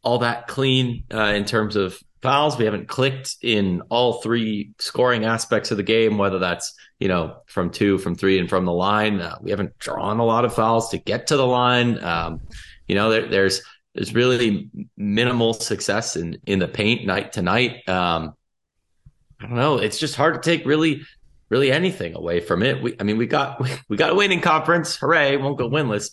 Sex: male